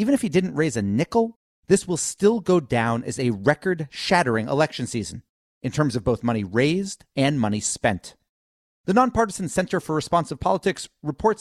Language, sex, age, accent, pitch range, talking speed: English, male, 30-49, American, 120-180 Hz, 175 wpm